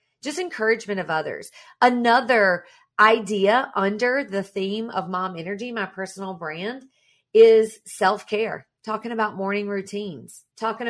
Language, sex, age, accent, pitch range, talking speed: English, female, 40-59, American, 190-235 Hz, 120 wpm